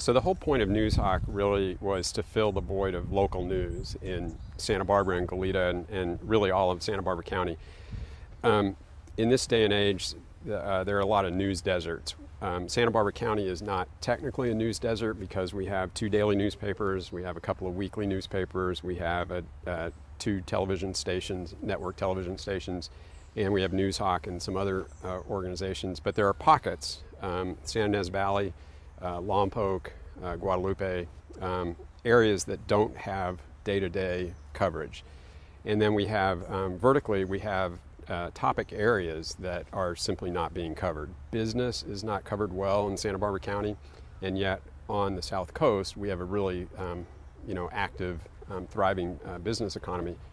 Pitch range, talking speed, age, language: 90-100 Hz, 175 wpm, 40-59, English